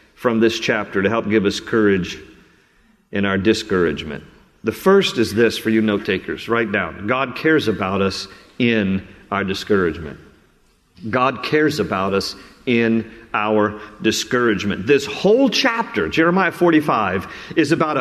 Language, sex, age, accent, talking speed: English, male, 50-69, American, 140 wpm